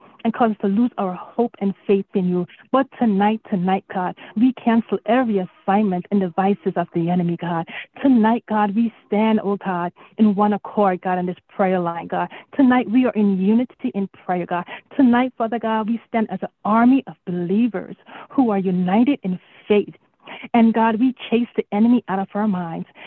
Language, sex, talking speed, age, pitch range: English, female, 190 wpm, 30-49, 190-235 Hz